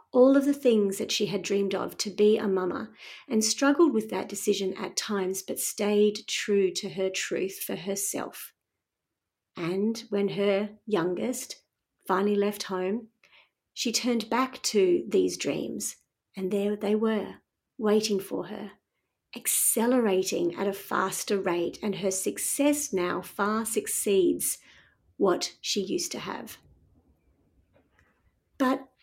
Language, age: English, 40-59